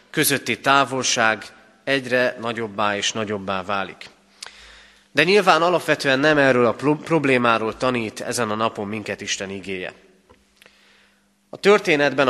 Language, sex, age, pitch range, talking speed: Hungarian, male, 30-49, 110-145 Hz, 110 wpm